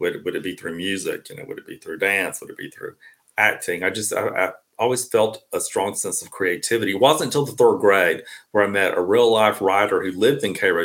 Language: English